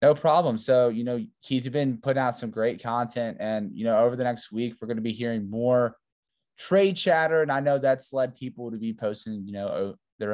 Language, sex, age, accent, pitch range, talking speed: English, male, 20-39, American, 100-125 Hz, 225 wpm